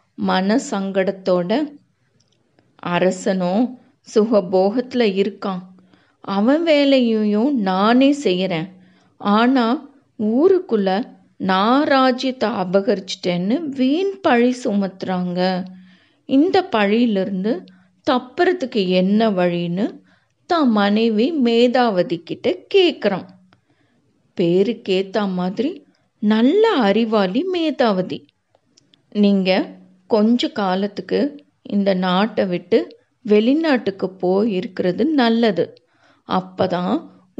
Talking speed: 65 wpm